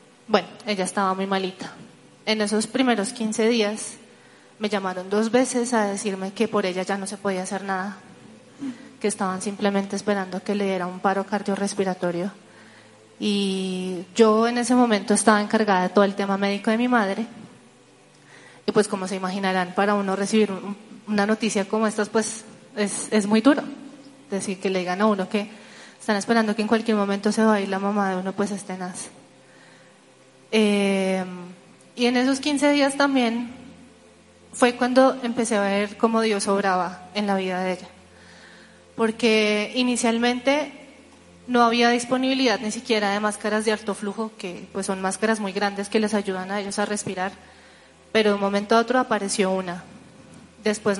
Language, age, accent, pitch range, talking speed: Spanish, 20-39, Colombian, 195-230 Hz, 170 wpm